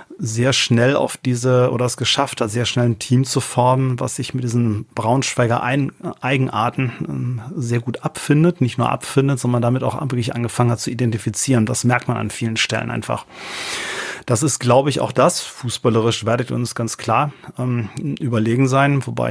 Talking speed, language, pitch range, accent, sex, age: 175 wpm, German, 120-135 Hz, German, male, 30-49